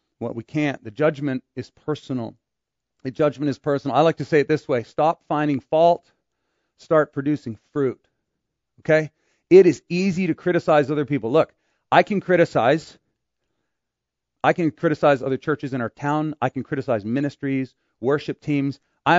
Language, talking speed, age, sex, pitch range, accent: English, 165 wpm, 40-59, male, 130-170 Hz, American